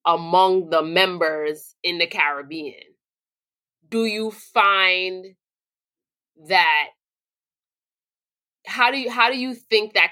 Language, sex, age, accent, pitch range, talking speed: English, female, 30-49, American, 165-215 Hz, 105 wpm